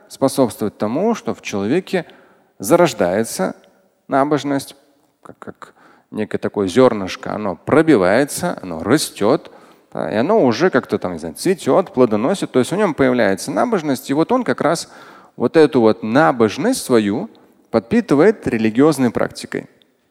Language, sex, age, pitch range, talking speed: Russian, male, 30-49, 110-155 Hz, 130 wpm